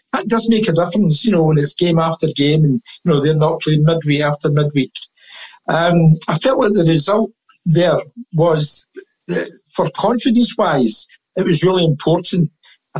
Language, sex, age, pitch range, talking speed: English, male, 60-79, 155-195 Hz, 165 wpm